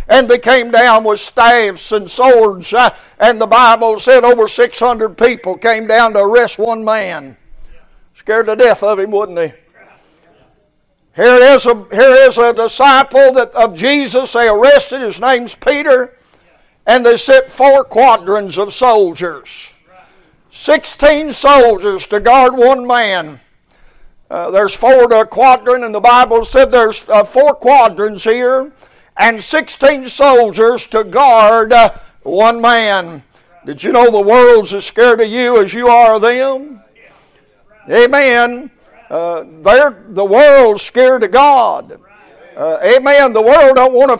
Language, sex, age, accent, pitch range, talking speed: English, male, 60-79, American, 220-265 Hz, 140 wpm